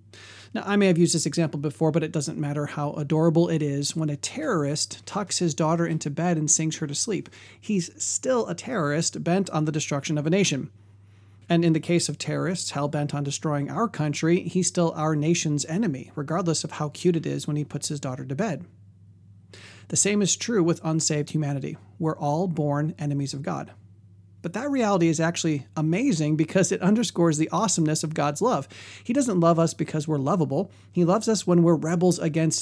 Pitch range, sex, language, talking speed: 145-170 Hz, male, English, 200 wpm